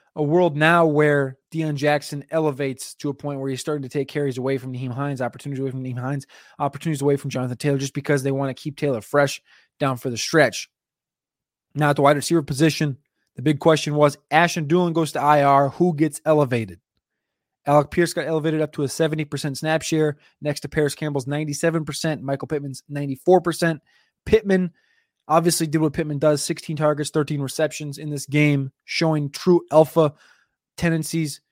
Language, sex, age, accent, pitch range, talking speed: English, male, 20-39, American, 145-170 Hz, 185 wpm